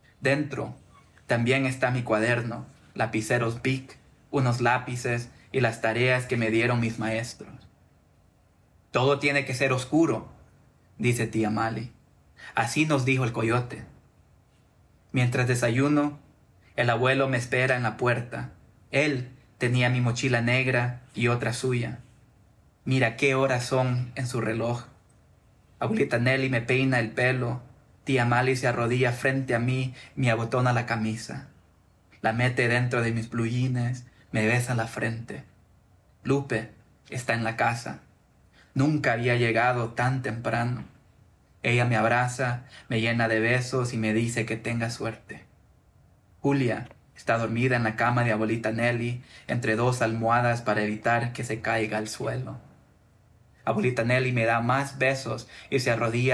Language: Portuguese